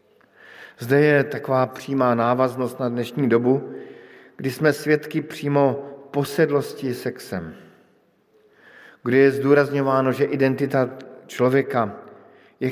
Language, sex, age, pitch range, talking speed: Slovak, male, 50-69, 115-140 Hz, 100 wpm